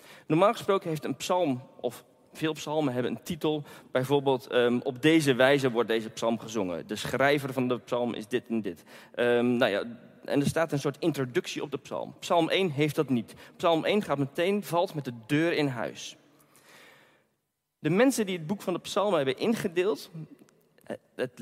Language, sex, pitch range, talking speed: Dutch, male, 125-180 Hz, 175 wpm